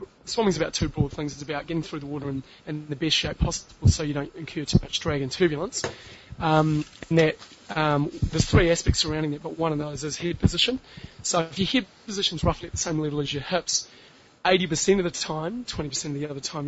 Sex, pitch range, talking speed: male, 145-170 Hz, 230 wpm